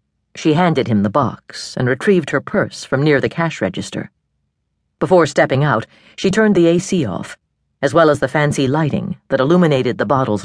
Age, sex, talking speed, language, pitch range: 50-69, female, 185 wpm, English, 130-170 Hz